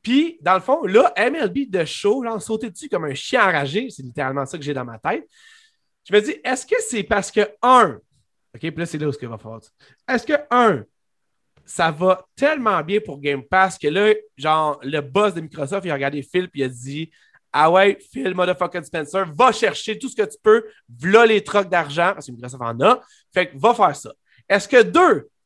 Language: French